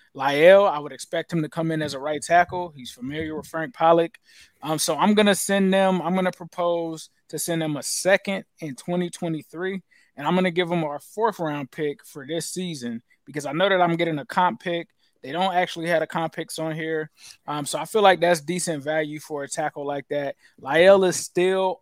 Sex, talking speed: male, 225 wpm